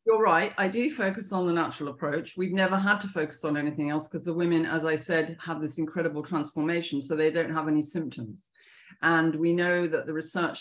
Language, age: English, 40-59